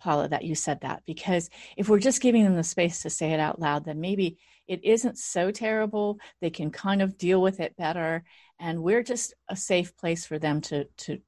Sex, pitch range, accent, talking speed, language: female, 160-200 Hz, American, 225 wpm, English